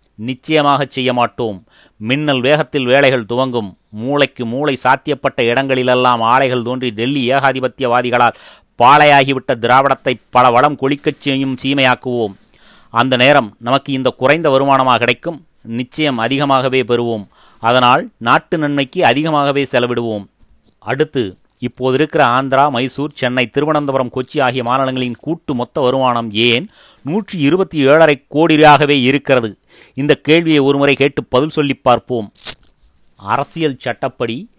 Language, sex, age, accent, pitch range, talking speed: Tamil, male, 30-49, native, 125-140 Hz, 110 wpm